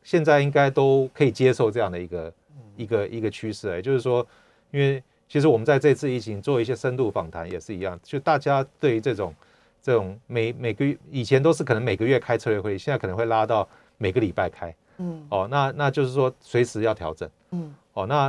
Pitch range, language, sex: 105-145 Hz, Chinese, male